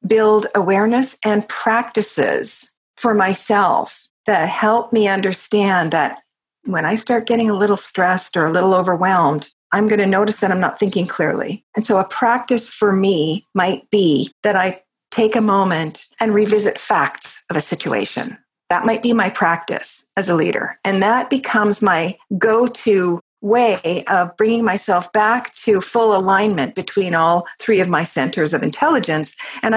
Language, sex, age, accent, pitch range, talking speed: English, female, 50-69, American, 185-225 Hz, 160 wpm